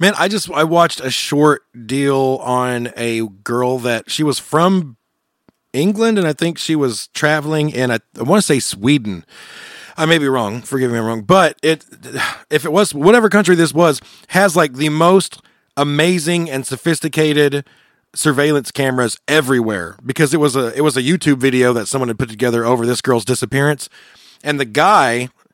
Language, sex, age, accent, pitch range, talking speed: English, male, 30-49, American, 130-170 Hz, 185 wpm